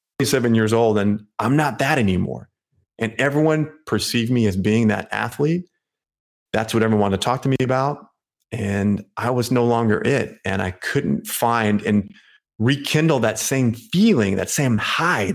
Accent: American